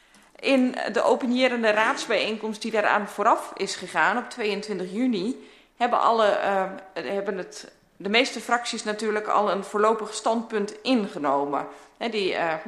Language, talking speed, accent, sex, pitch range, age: Dutch, 135 wpm, Dutch, female, 180-225 Hz, 30-49